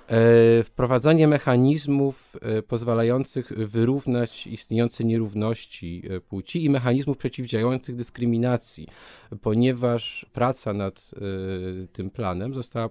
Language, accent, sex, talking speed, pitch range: Polish, native, male, 80 wpm, 95-115 Hz